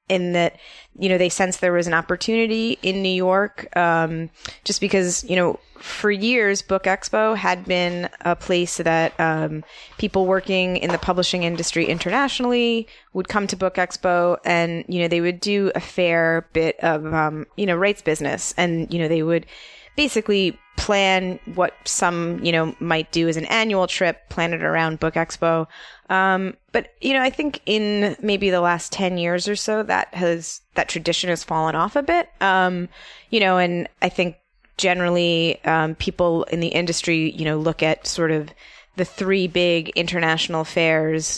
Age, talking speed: 20-39, 180 wpm